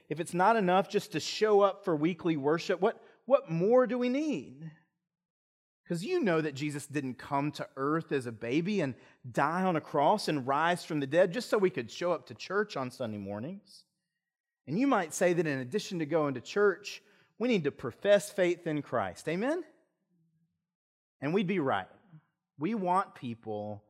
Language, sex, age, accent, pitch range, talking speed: English, male, 30-49, American, 145-190 Hz, 190 wpm